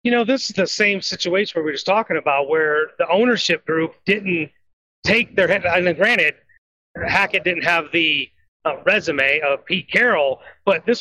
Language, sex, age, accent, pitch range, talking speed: English, male, 30-49, American, 175-225 Hz, 190 wpm